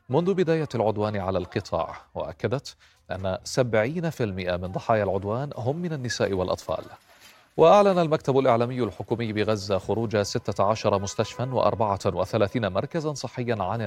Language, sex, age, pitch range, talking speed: Arabic, male, 30-49, 105-135 Hz, 115 wpm